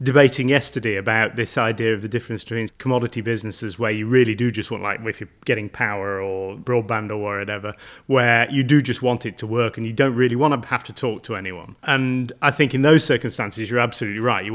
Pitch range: 110-135 Hz